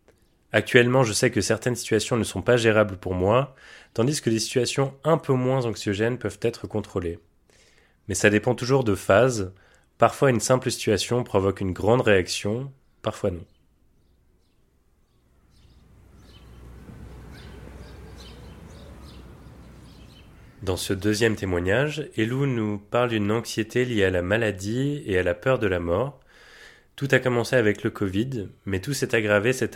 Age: 30-49